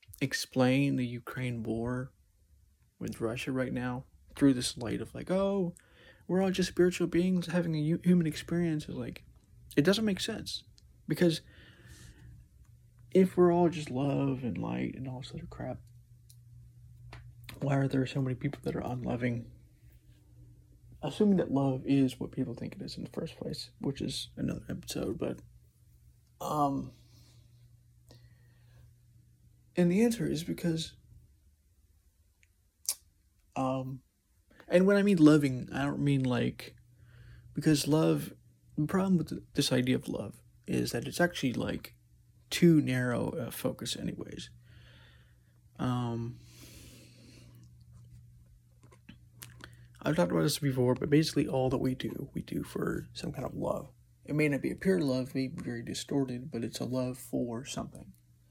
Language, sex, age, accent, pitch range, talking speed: English, male, 30-49, American, 115-145 Hz, 145 wpm